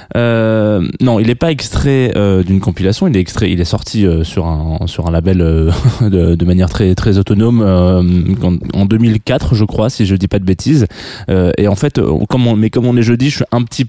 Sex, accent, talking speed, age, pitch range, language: male, French, 240 wpm, 20-39, 90-120 Hz, French